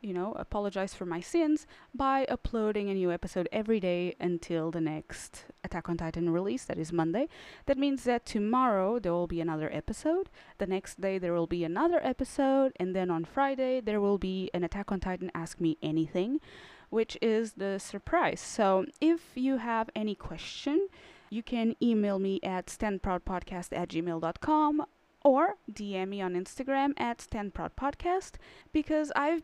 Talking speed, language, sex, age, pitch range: 165 wpm, English, female, 20-39, 175-245 Hz